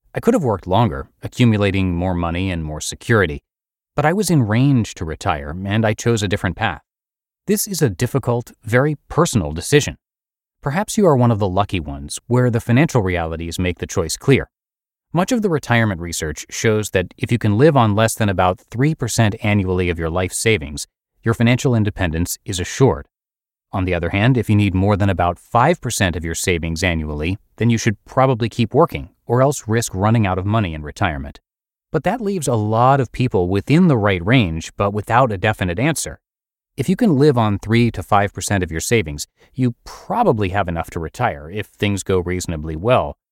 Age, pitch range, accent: 30-49, 95-125 Hz, American